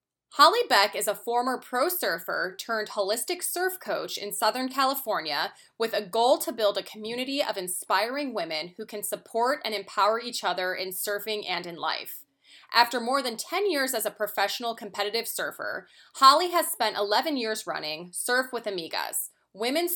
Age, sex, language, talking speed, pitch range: 20-39, female, English, 170 wpm, 195-255 Hz